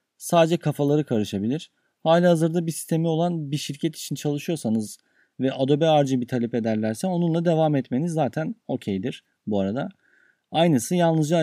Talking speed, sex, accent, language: 135 wpm, male, native, Turkish